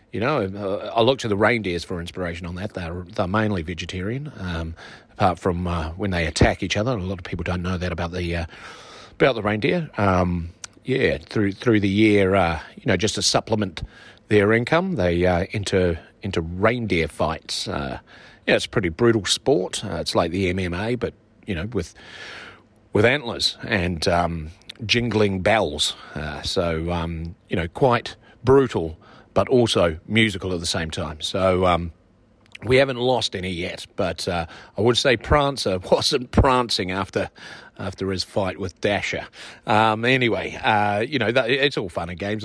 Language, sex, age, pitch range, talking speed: English, male, 40-59, 90-115 Hz, 180 wpm